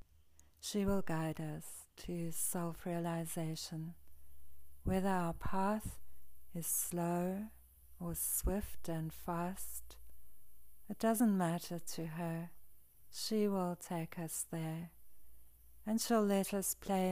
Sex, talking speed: female, 105 wpm